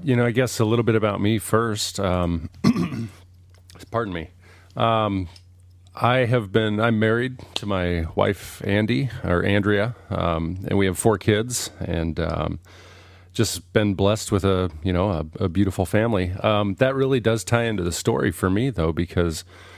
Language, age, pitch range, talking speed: English, 30-49, 90-110 Hz, 170 wpm